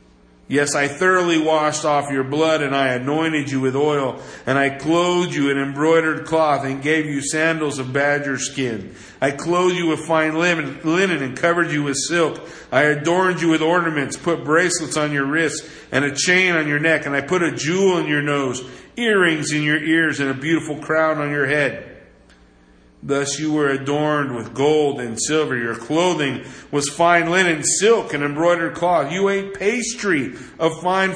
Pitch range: 140-185 Hz